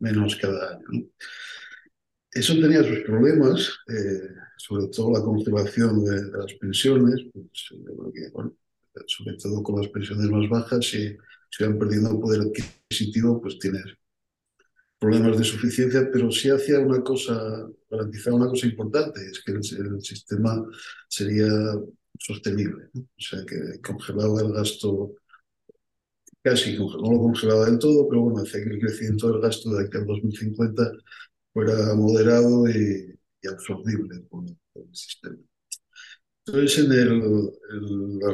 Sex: male